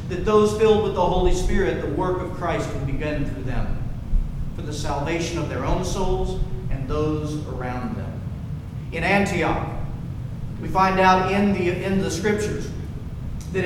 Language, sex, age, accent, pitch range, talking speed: English, male, 40-59, American, 135-195 Hz, 165 wpm